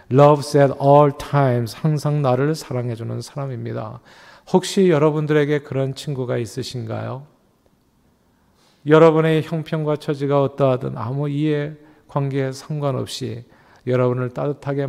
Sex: male